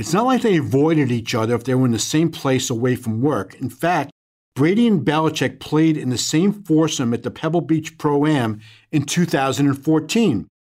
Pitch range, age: 130-170 Hz, 50-69